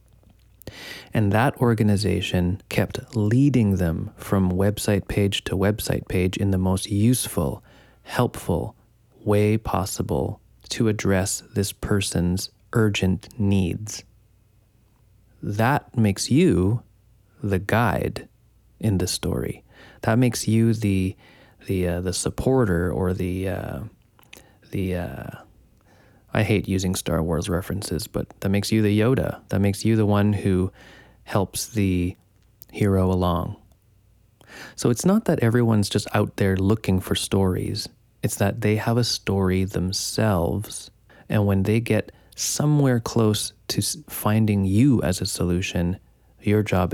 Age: 30-49